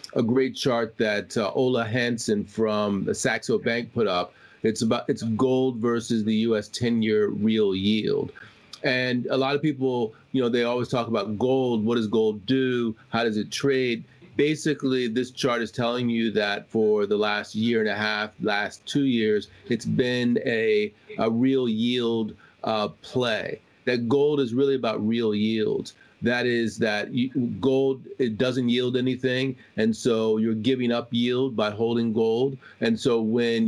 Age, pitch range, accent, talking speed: 30-49, 110-130 Hz, American, 170 wpm